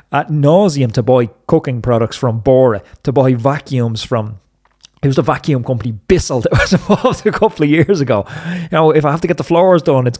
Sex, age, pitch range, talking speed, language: male, 30-49, 110-145 Hz, 220 wpm, English